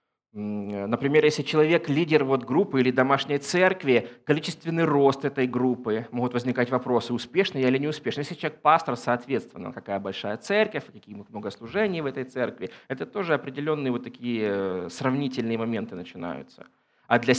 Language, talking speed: Ukrainian, 140 wpm